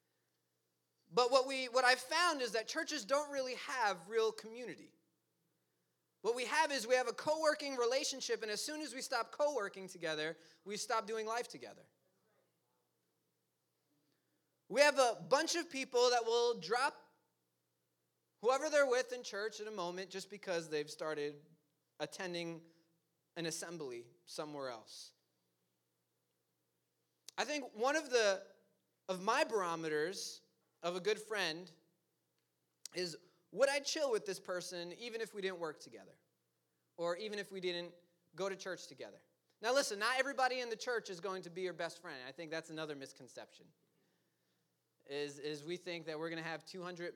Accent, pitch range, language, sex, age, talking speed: American, 160-255 Hz, English, male, 30-49, 160 wpm